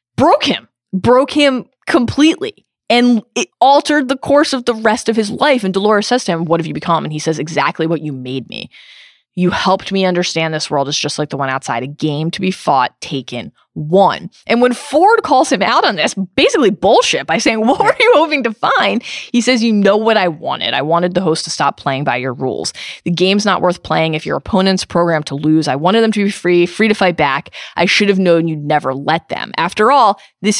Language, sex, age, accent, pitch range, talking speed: English, female, 20-39, American, 165-225 Hz, 235 wpm